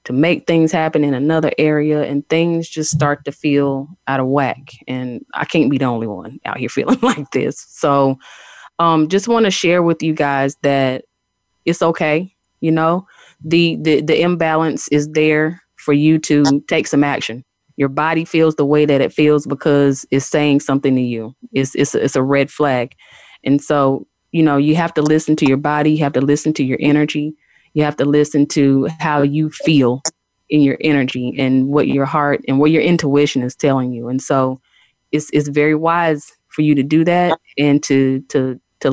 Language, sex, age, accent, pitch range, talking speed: English, female, 20-39, American, 140-160 Hz, 200 wpm